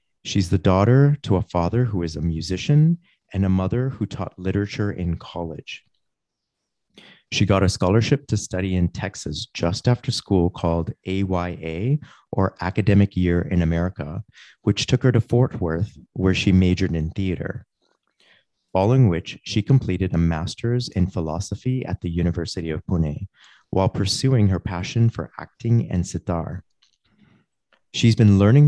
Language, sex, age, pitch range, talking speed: English, male, 30-49, 90-110 Hz, 150 wpm